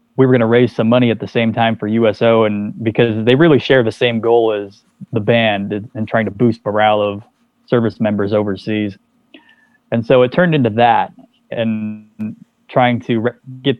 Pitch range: 105-120 Hz